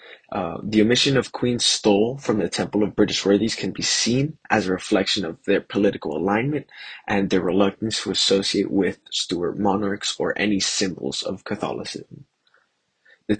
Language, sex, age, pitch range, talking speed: English, male, 20-39, 100-115 Hz, 160 wpm